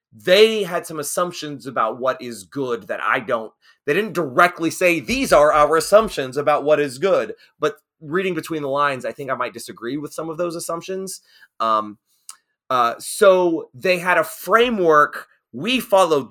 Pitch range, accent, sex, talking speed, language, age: 140-185 Hz, American, male, 175 wpm, English, 30-49